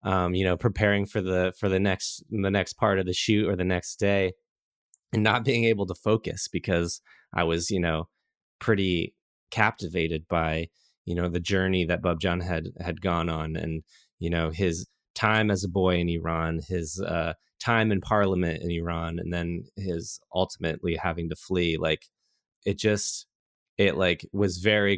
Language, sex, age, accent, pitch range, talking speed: English, male, 20-39, American, 85-100 Hz, 180 wpm